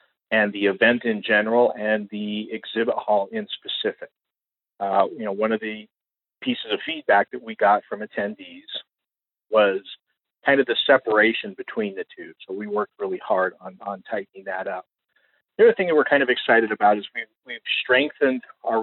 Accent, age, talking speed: American, 40-59, 180 wpm